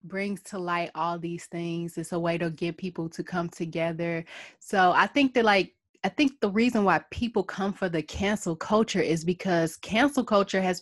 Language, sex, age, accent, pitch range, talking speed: English, female, 20-39, American, 175-215 Hz, 200 wpm